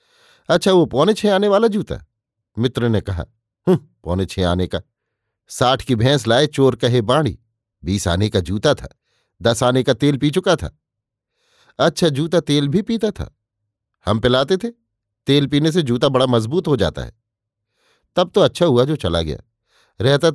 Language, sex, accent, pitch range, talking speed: Hindi, male, native, 110-150 Hz, 175 wpm